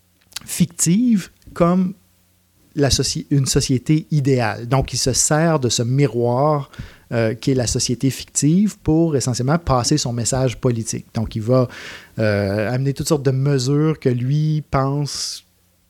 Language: French